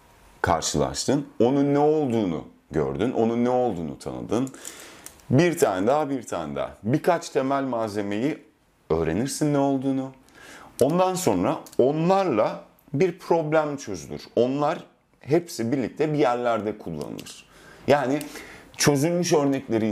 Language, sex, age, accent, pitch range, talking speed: Turkish, male, 40-59, native, 110-150 Hz, 110 wpm